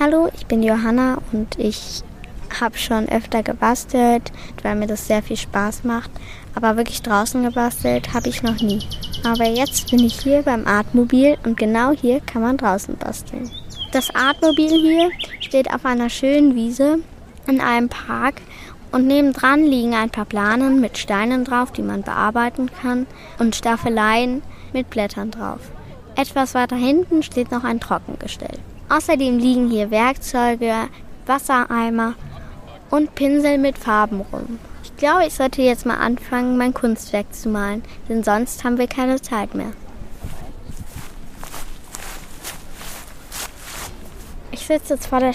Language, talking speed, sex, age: German, 145 wpm, female, 20-39